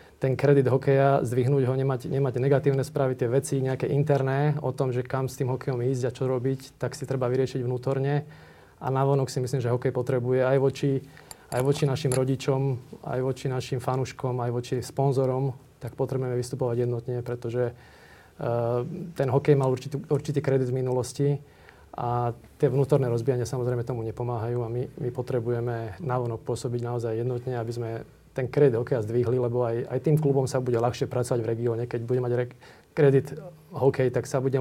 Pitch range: 125-140 Hz